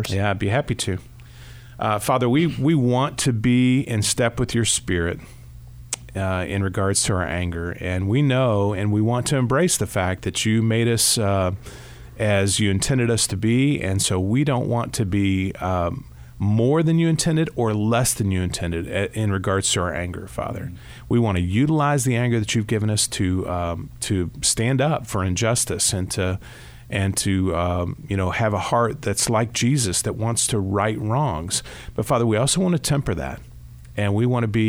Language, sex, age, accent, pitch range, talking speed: English, male, 40-59, American, 95-120 Hz, 200 wpm